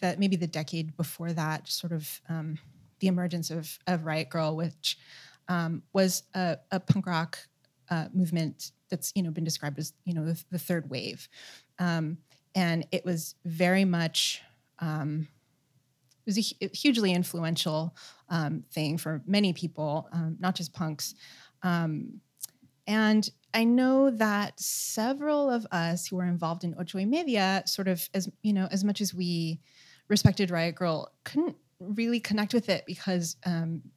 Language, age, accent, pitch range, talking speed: English, 30-49, American, 160-190 Hz, 160 wpm